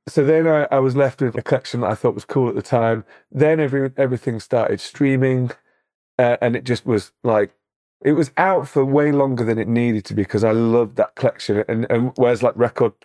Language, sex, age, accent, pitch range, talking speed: English, male, 30-49, British, 105-125 Hz, 225 wpm